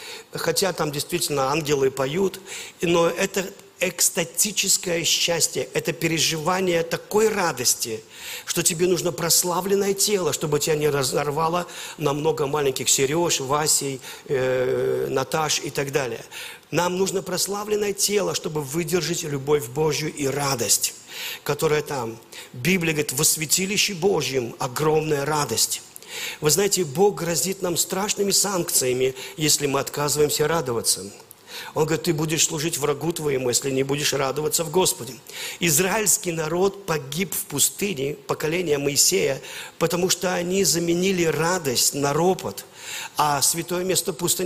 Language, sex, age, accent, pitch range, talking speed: Russian, male, 50-69, native, 150-185 Hz, 125 wpm